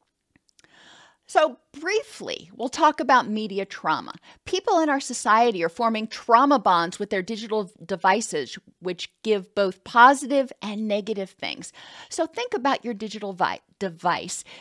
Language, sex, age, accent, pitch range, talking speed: English, female, 40-59, American, 195-240 Hz, 130 wpm